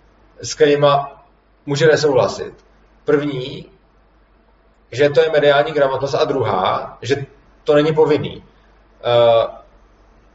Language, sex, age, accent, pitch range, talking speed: Czech, male, 30-49, native, 140-165 Hz, 100 wpm